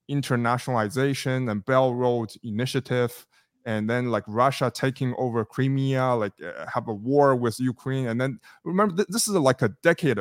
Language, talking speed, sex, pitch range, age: English, 155 wpm, male, 115-140 Hz, 20-39